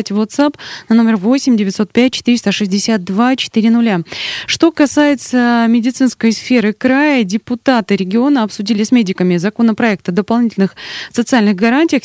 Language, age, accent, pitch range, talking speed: Russian, 20-39, native, 180-230 Hz, 100 wpm